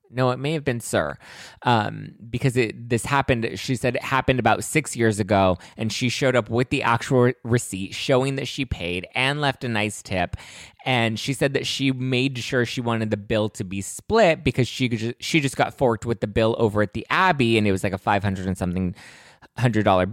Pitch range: 100-125 Hz